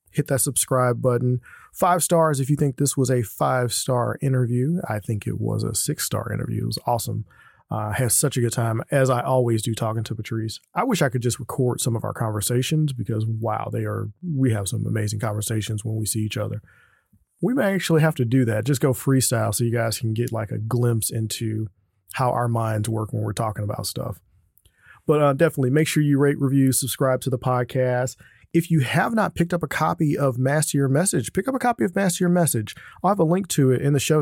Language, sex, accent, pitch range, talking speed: English, male, American, 115-145 Hz, 230 wpm